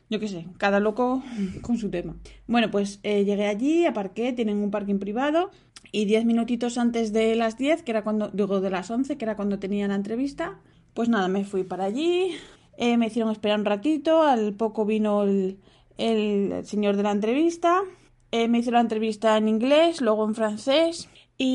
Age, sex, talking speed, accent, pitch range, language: 20-39, female, 195 wpm, Spanish, 200-240 Hz, Spanish